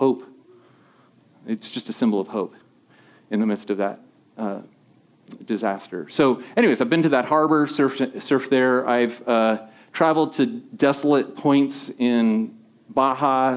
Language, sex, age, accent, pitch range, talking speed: English, male, 40-59, American, 115-180 Hz, 140 wpm